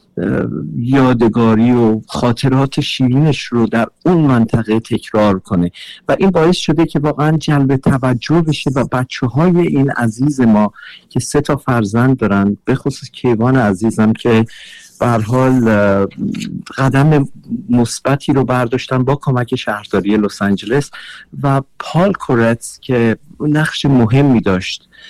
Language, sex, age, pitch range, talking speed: Persian, male, 50-69, 110-135 Hz, 125 wpm